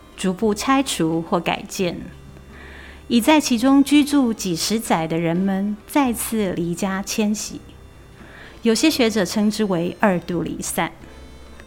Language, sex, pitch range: Chinese, female, 180-240 Hz